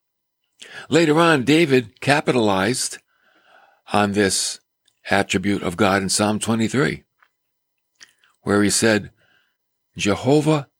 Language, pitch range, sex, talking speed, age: English, 100-145 Hz, male, 90 wpm, 60-79